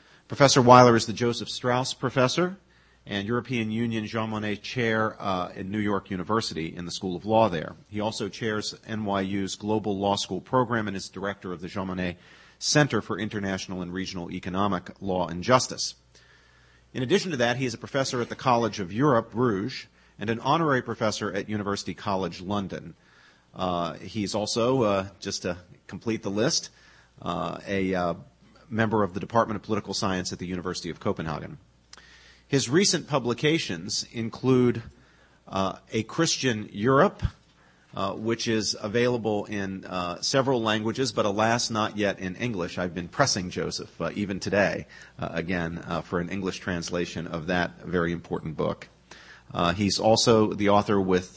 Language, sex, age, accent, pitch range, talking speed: English, male, 40-59, American, 95-115 Hz, 165 wpm